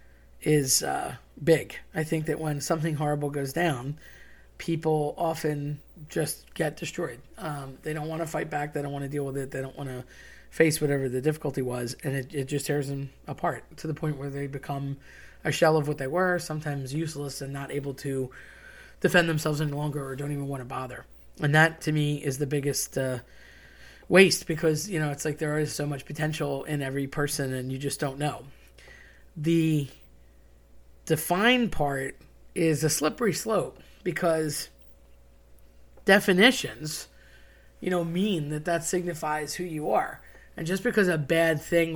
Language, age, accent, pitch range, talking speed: English, 20-39, American, 140-165 Hz, 180 wpm